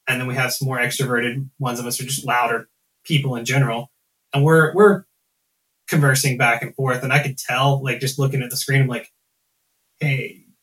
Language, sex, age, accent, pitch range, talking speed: English, male, 30-49, American, 125-155 Hz, 205 wpm